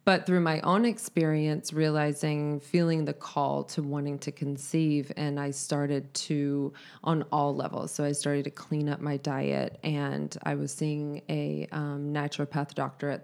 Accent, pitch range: American, 145-160 Hz